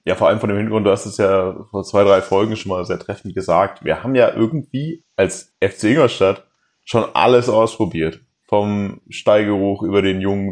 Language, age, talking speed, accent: German, 20-39, 195 wpm, German